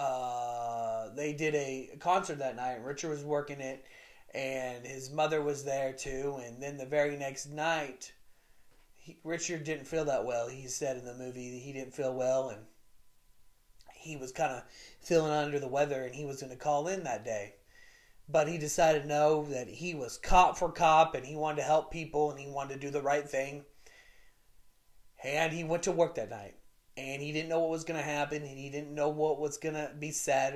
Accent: American